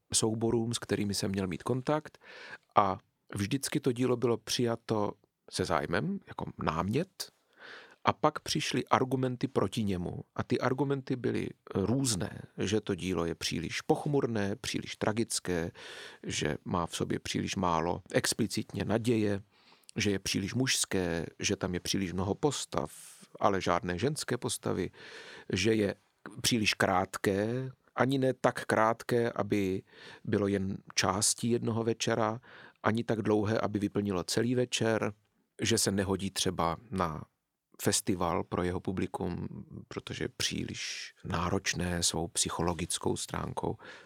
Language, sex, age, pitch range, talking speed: Czech, male, 40-59, 100-125 Hz, 130 wpm